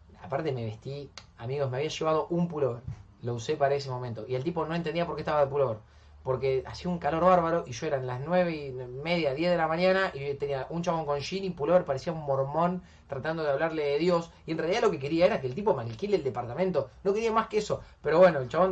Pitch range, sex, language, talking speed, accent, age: 130-185 Hz, male, Spanish, 255 wpm, Argentinian, 30-49